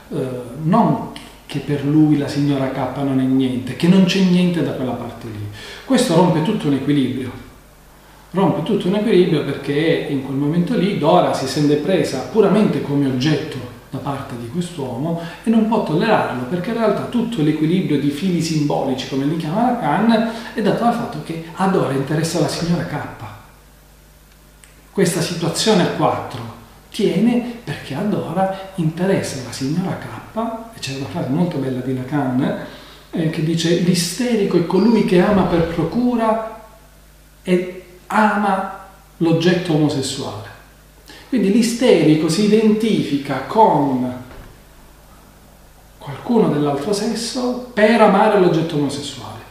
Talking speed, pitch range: 140 wpm, 140-200 Hz